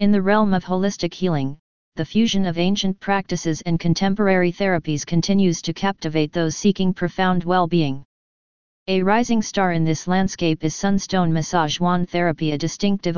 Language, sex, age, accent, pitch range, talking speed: English, female, 40-59, American, 165-190 Hz, 155 wpm